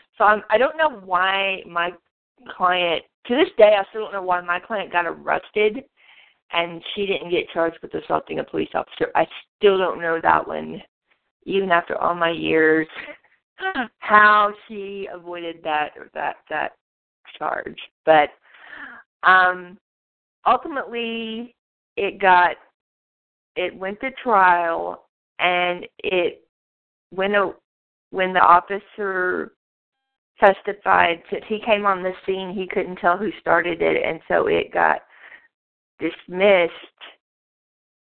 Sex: female